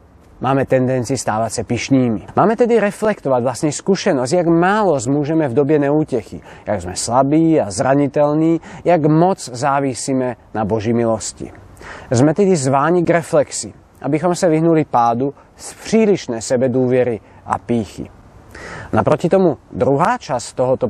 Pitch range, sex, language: 115-160 Hz, male, Czech